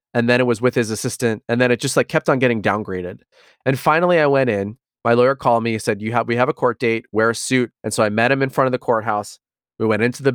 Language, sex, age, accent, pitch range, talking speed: English, male, 30-49, American, 110-135 Hz, 295 wpm